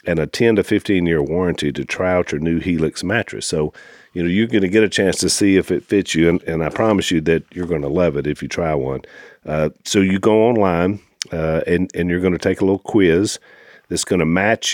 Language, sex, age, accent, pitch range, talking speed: English, male, 50-69, American, 80-100 Hz, 255 wpm